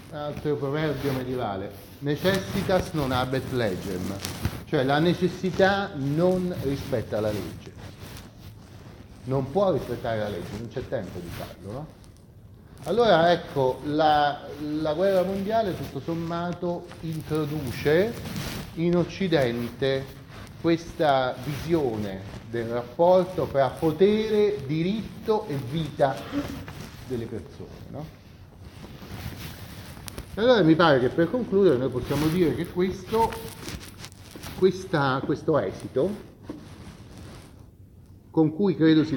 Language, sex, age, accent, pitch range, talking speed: Italian, male, 40-59, native, 105-160 Hz, 100 wpm